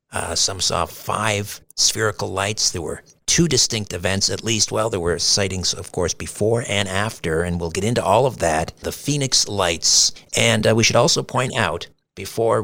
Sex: male